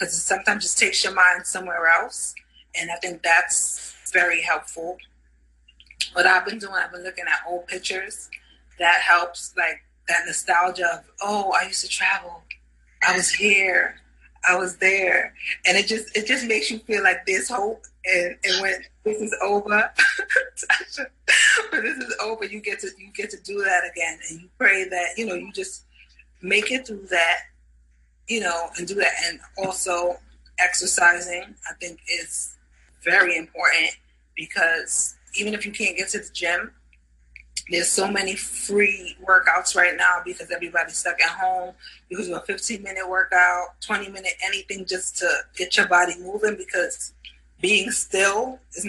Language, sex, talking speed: English, female, 165 wpm